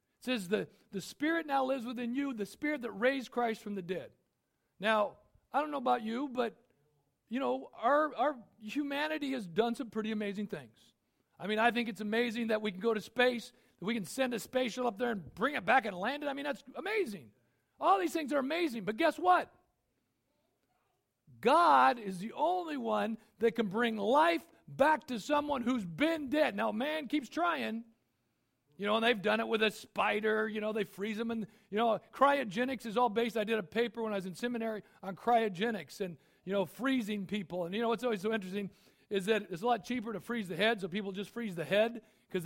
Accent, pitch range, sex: American, 200-255 Hz, male